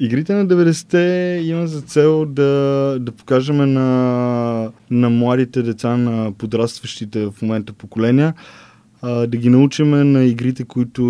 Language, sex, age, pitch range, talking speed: Bulgarian, male, 20-39, 110-125 Hz, 130 wpm